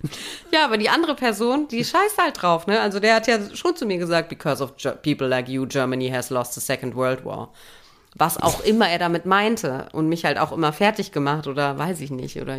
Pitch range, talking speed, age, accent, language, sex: 150-200 Hz, 230 wpm, 30-49, German, German, female